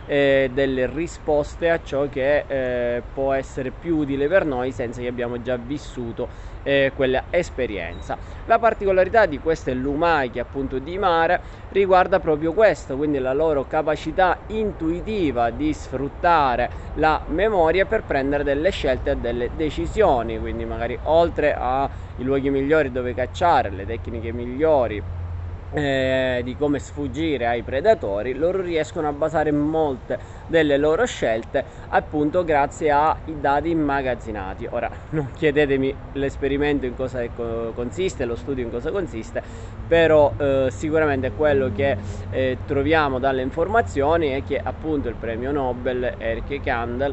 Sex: male